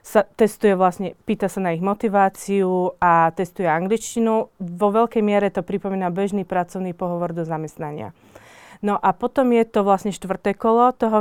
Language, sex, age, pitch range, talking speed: Slovak, female, 30-49, 185-210 Hz, 160 wpm